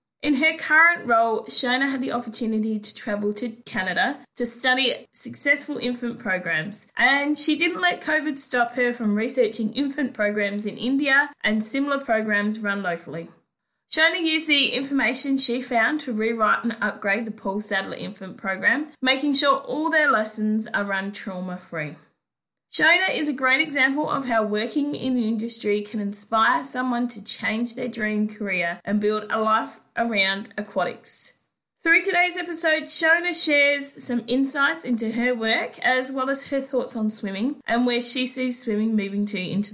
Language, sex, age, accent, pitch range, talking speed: English, female, 20-39, Australian, 215-275 Hz, 165 wpm